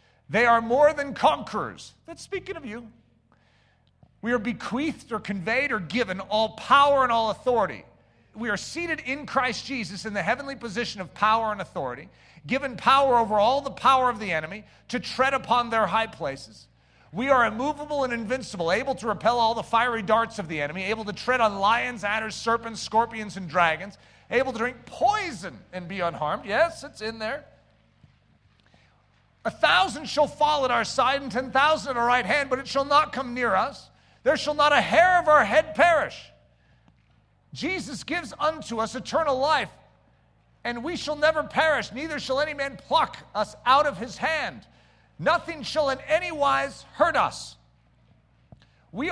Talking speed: 175 wpm